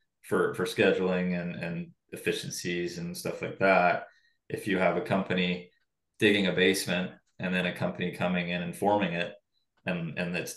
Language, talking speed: English, 170 wpm